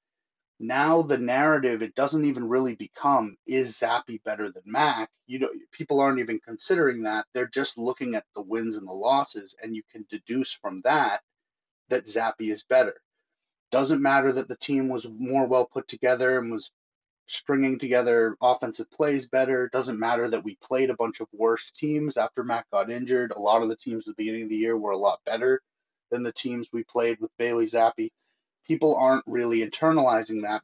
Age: 30-49